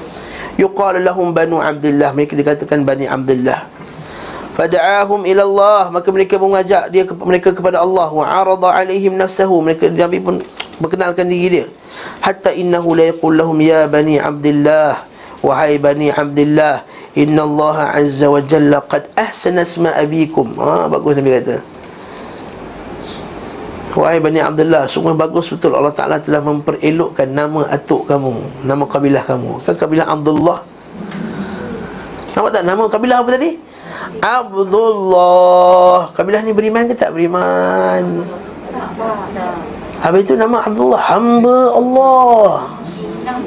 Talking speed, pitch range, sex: 130 wpm, 150-195 Hz, male